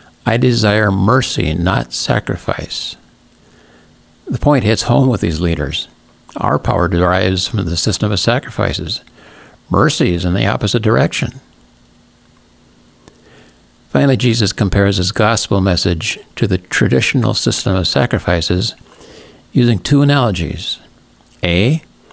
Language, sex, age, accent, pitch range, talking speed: English, male, 60-79, American, 85-115 Hz, 115 wpm